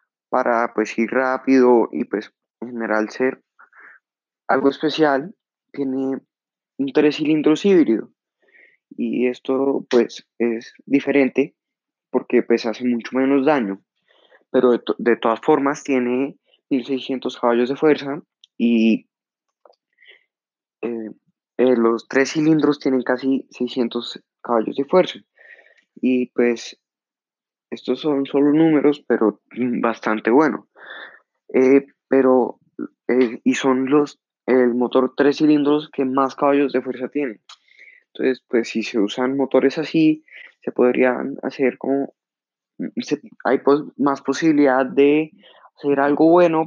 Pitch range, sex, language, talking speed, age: 125-145 Hz, male, English, 120 wpm, 20-39